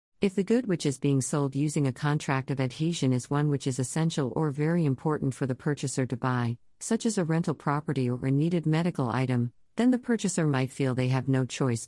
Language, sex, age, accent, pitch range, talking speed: English, female, 50-69, American, 130-160 Hz, 220 wpm